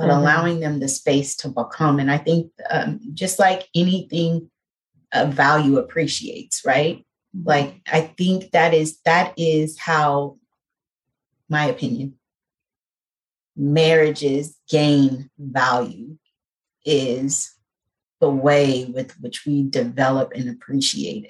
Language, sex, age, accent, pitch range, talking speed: English, female, 30-49, American, 140-165 Hz, 115 wpm